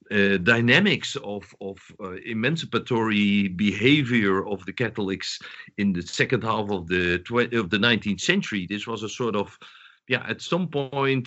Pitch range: 95-125 Hz